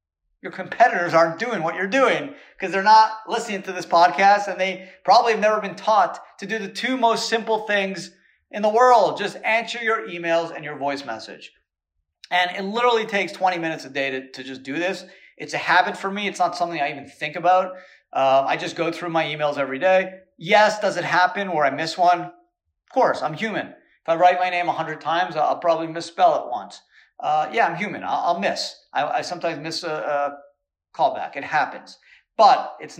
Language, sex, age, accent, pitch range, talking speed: English, male, 40-59, American, 145-195 Hz, 205 wpm